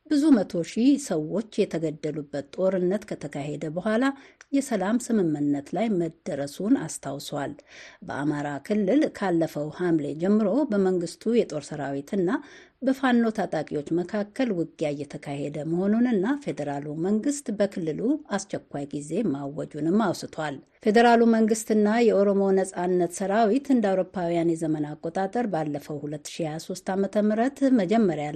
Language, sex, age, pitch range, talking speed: Amharic, female, 60-79, 150-230 Hz, 100 wpm